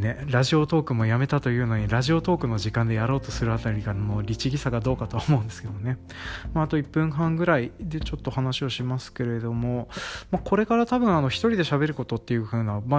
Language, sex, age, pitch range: Japanese, male, 20-39, 115-155 Hz